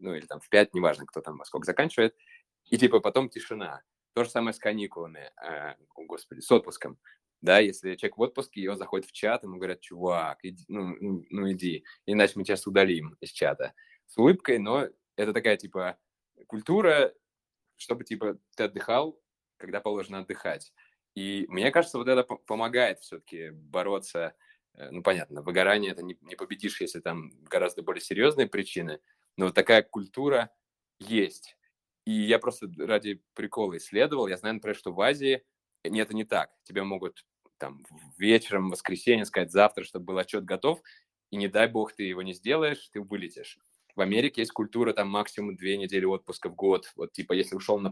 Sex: male